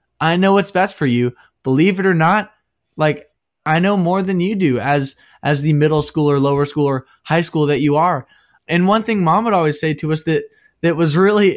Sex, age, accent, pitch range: male, 20-39, American, 145-175 Hz